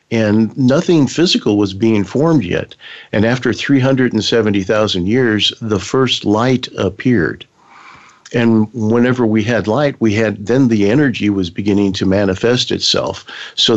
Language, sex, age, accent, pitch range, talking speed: English, male, 50-69, American, 100-120 Hz, 135 wpm